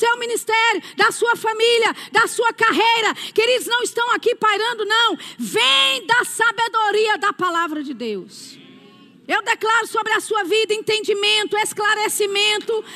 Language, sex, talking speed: Portuguese, female, 140 wpm